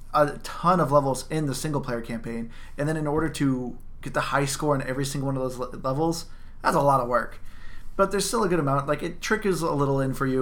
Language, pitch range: English, 120-155 Hz